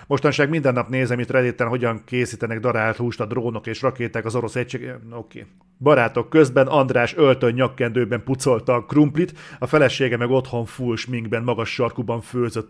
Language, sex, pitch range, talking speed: Hungarian, male, 120-150 Hz, 170 wpm